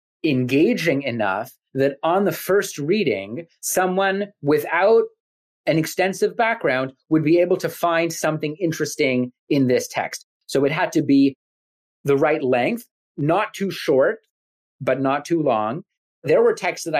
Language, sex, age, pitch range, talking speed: English, male, 30-49, 130-170 Hz, 145 wpm